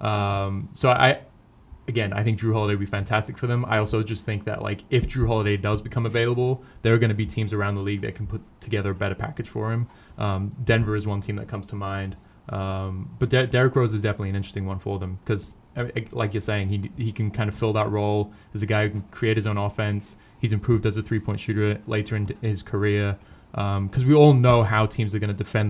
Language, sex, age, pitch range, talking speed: English, male, 20-39, 100-115 Hz, 255 wpm